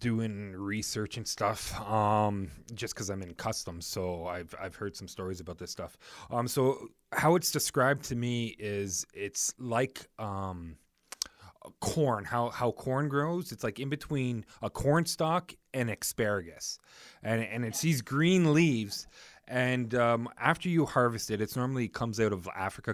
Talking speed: 160 wpm